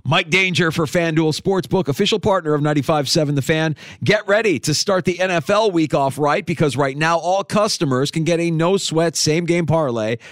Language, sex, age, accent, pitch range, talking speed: English, male, 40-59, American, 125-165 Hz, 190 wpm